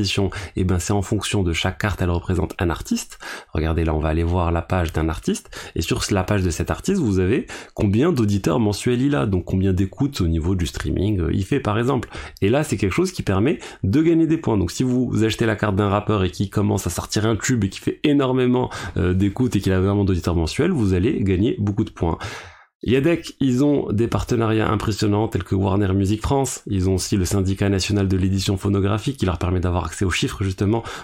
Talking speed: 230 wpm